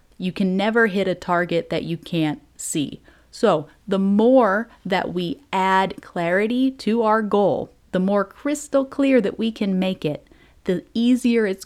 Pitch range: 180-230 Hz